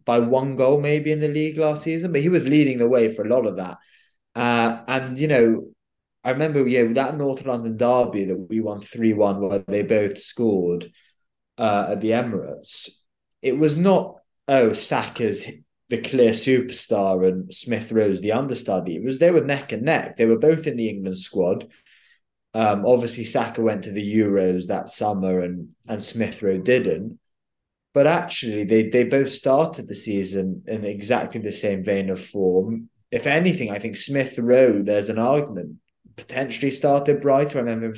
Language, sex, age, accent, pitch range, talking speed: English, male, 20-39, British, 105-125 Hz, 175 wpm